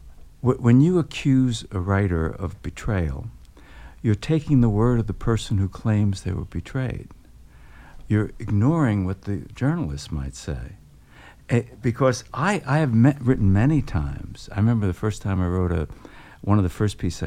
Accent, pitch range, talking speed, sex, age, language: American, 85-115 Hz, 165 wpm, male, 60-79, English